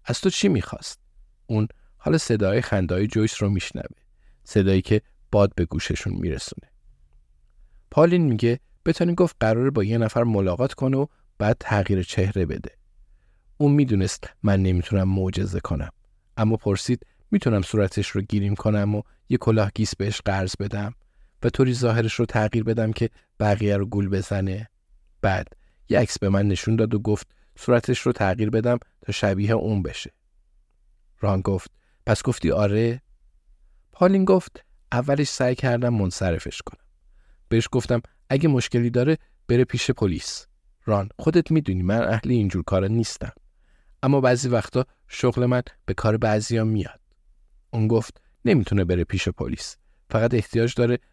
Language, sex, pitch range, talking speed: Persian, male, 95-120 Hz, 150 wpm